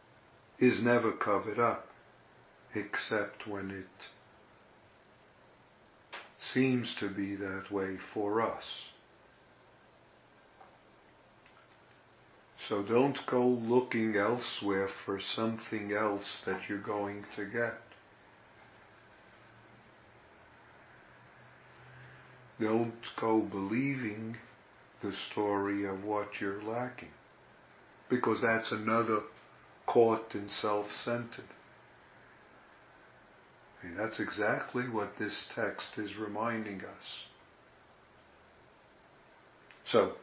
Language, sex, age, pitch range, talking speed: English, male, 50-69, 100-115 Hz, 80 wpm